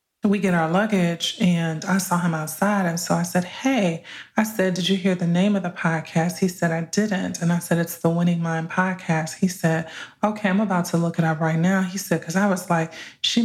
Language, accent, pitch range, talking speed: English, American, 170-195 Hz, 240 wpm